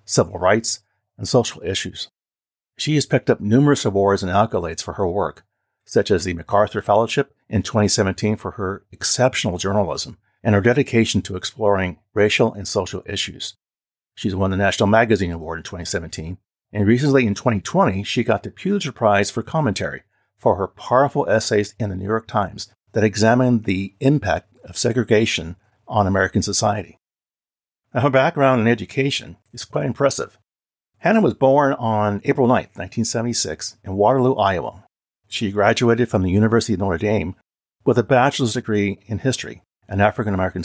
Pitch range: 100-120 Hz